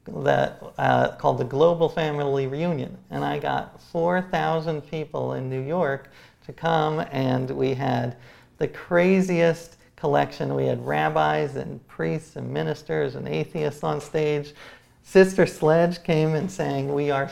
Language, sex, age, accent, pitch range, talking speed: English, male, 40-59, American, 135-170 Hz, 140 wpm